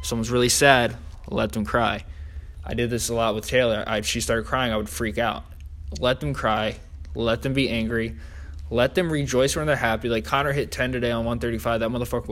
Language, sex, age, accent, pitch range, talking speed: English, male, 20-39, American, 80-125 Hz, 215 wpm